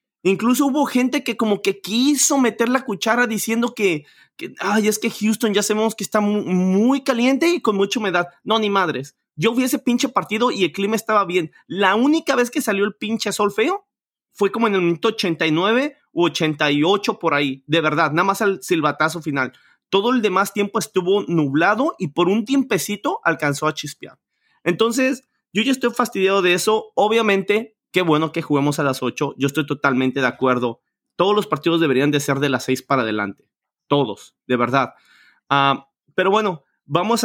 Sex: male